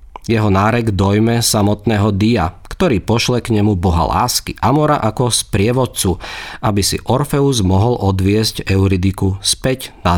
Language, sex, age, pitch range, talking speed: Slovak, male, 40-59, 95-125 Hz, 135 wpm